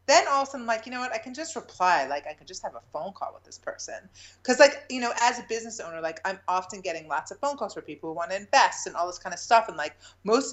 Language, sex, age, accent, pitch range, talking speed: English, female, 30-49, American, 150-215 Hz, 315 wpm